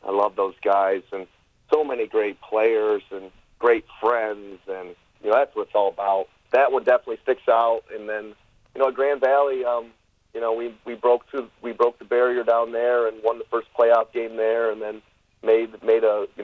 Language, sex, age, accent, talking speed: English, male, 40-59, American, 210 wpm